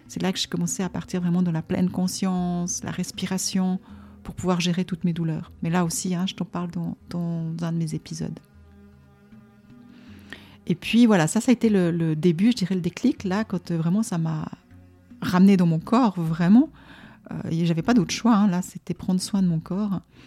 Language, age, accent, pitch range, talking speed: French, 40-59, French, 170-195 Hz, 215 wpm